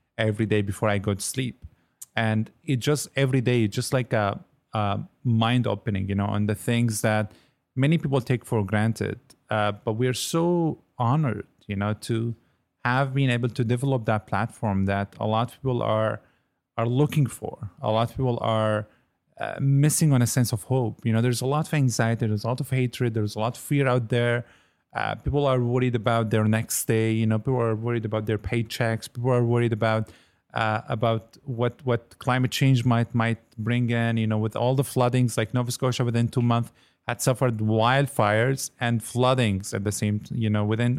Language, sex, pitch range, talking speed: English, male, 110-130 Hz, 200 wpm